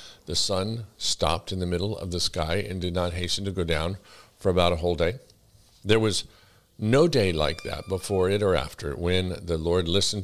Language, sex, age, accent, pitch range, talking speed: English, male, 50-69, American, 85-105 Hz, 210 wpm